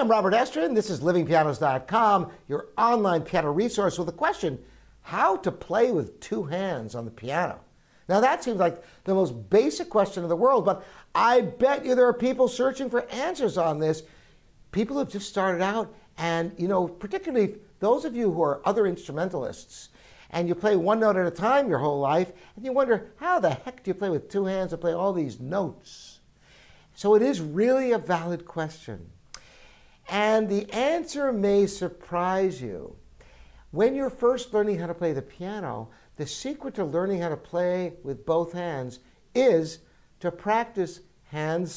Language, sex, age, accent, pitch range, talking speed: English, male, 60-79, American, 165-225 Hz, 180 wpm